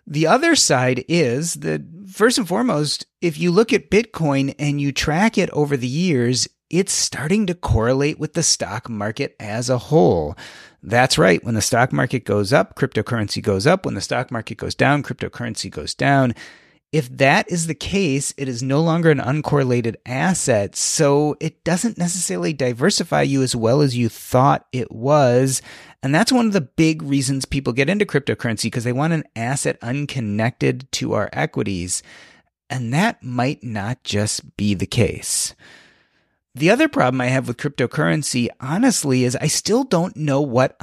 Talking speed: 175 wpm